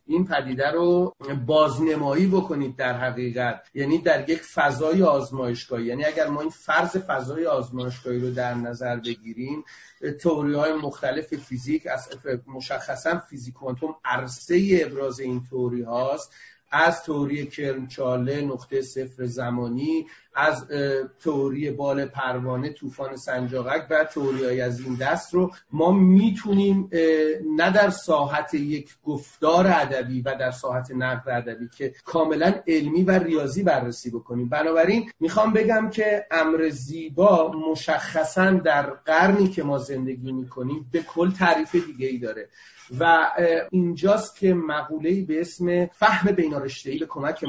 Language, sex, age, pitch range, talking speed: Persian, male, 40-59, 130-170 Hz, 130 wpm